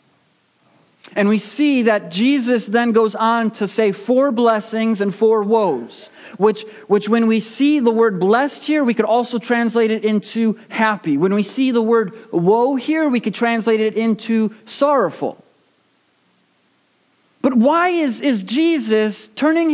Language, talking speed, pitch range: English, 150 wpm, 175-235 Hz